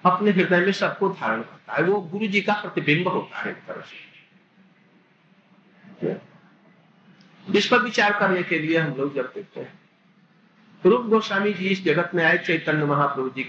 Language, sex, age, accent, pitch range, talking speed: Hindi, male, 50-69, native, 175-215 Hz, 155 wpm